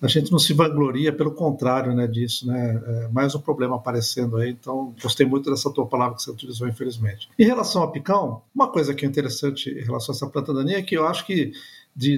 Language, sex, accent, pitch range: Portuguese, male, Brazilian, 130-170 Hz